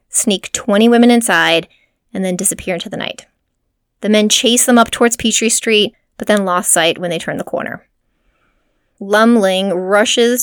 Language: English